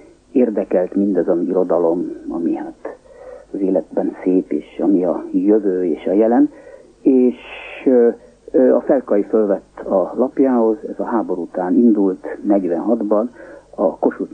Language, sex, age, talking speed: Hungarian, male, 50-69, 125 wpm